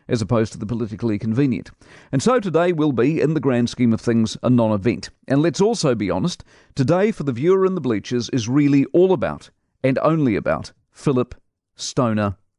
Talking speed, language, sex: 190 wpm, English, male